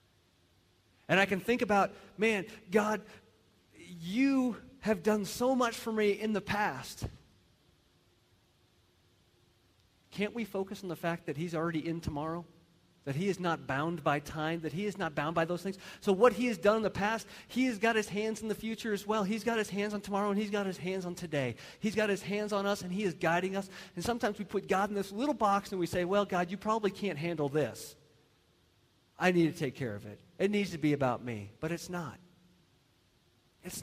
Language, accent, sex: English, American, male